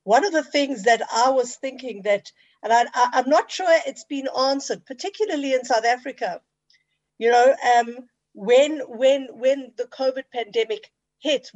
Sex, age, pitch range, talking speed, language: female, 50-69, 220-275 Hz, 165 wpm, English